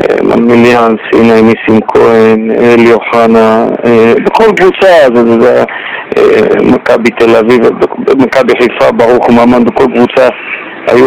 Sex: male